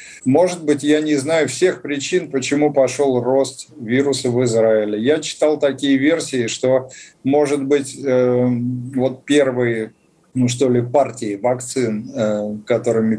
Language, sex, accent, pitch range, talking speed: Russian, male, native, 120-150 Hz, 125 wpm